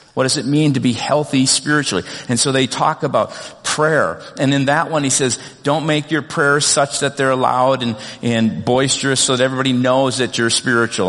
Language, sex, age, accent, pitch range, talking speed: English, male, 50-69, American, 125-155 Hz, 205 wpm